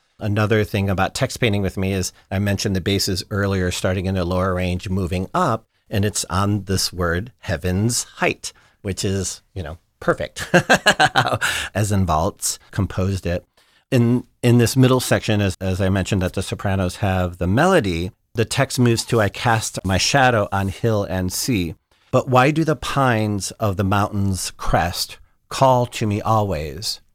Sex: male